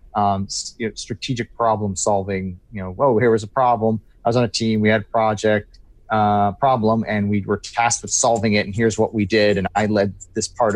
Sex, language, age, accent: male, English, 30-49, American